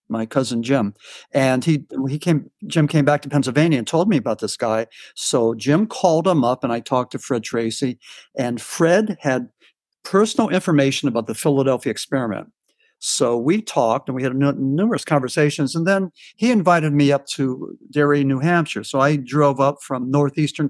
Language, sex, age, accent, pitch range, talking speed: English, male, 50-69, American, 130-165 Hz, 180 wpm